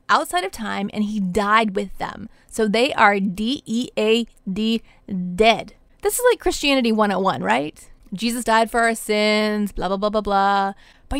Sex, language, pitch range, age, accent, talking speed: female, English, 205-260 Hz, 30-49, American, 160 wpm